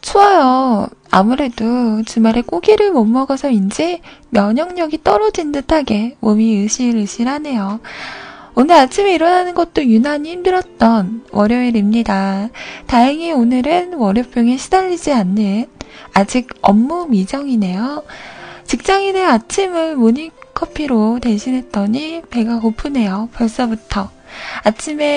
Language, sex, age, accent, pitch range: Korean, female, 20-39, native, 225-325 Hz